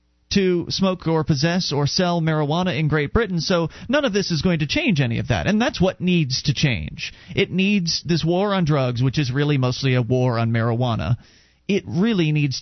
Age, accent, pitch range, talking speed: 40-59, American, 140-215 Hz, 210 wpm